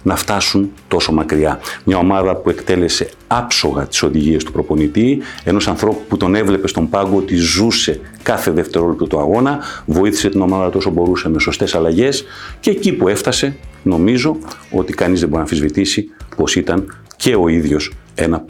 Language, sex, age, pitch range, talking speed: Greek, male, 50-69, 85-110 Hz, 160 wpm